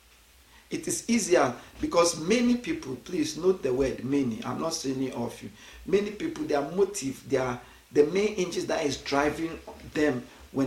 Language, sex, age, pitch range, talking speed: English, male, 50-69, 115-160 Hz, 170 wpm